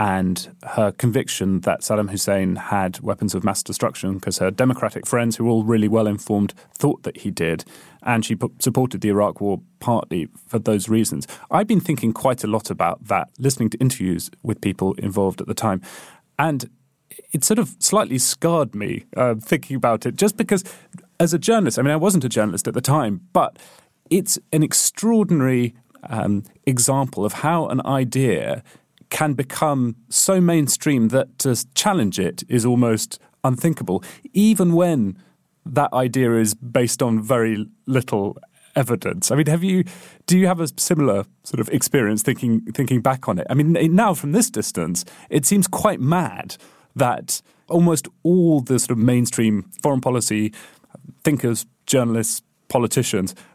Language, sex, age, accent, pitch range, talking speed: English, male, 30-49, British, 110-155 Hz, 165 wpm